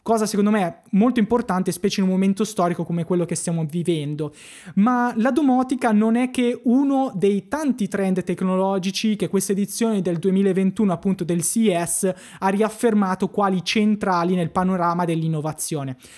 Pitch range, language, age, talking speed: 180-230 Hz, Italian, 20-39, 150 wpm